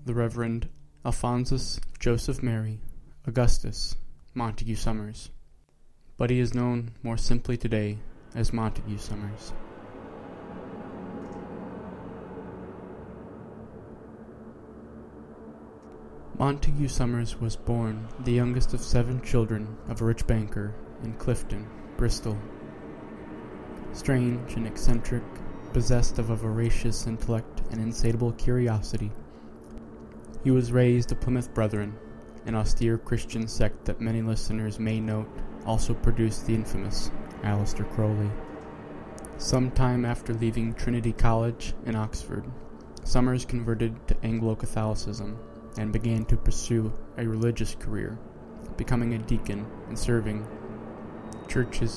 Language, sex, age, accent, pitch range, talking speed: English, male, 20-39, American, 105-120 Hz, 105 wpm